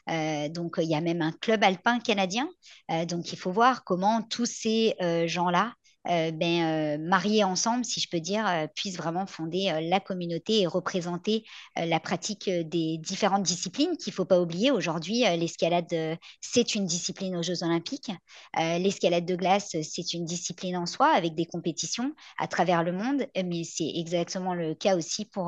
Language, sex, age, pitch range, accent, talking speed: French, male, 50-69, 165-200 Hz, French, 200 wpm